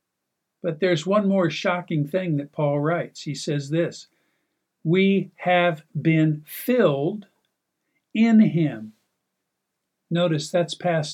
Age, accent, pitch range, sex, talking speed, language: 50-69, American, 145-180 Hz, male, 115 wpm, English